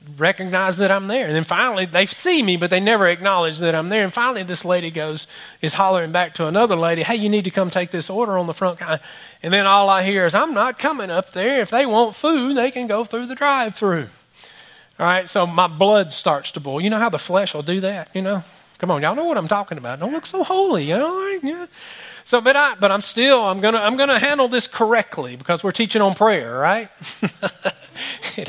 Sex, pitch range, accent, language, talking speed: male, 160-220 Hz, American, English, 235 wpm